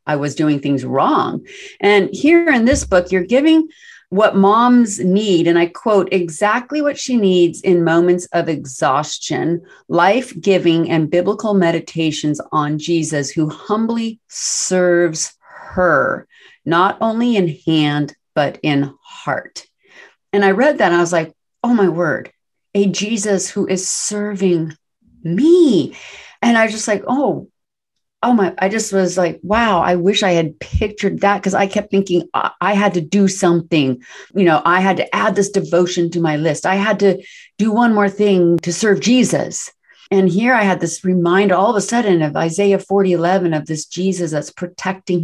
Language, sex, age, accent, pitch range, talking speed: English, female, 40-59, American, 165-205 Hz, 170 wpm